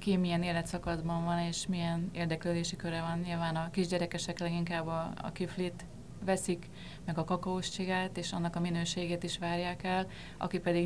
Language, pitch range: Hungarian, 160-175 Hz